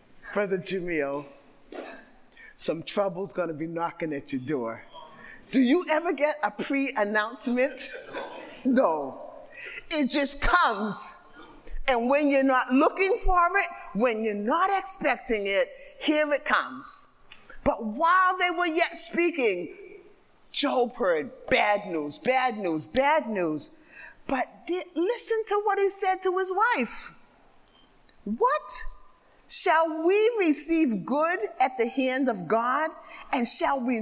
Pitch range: 230-355 Hz